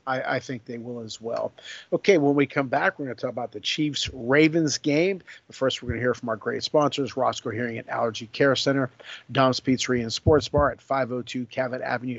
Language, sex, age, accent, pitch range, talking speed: English, male, 50-69, American, 125-145 Hz, 220 wpm